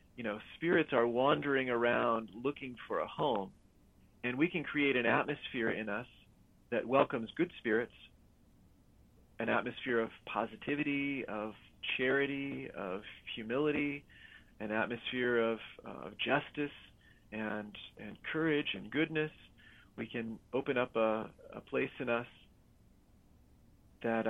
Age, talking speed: 40-59, 125 wpm